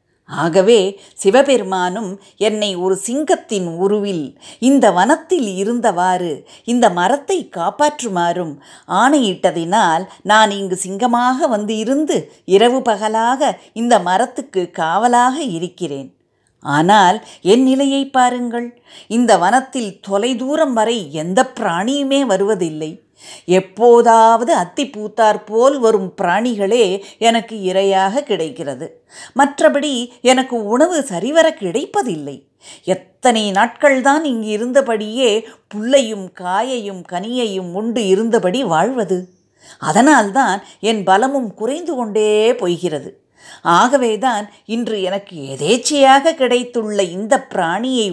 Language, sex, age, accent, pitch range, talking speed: Tamil, female, 50-69, native, 190-265 Hz, 90 wpm